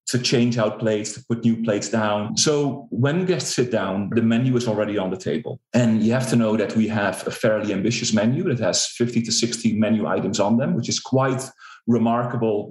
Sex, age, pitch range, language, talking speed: male, 30-49, 105-125 Hz, English, 215 wpm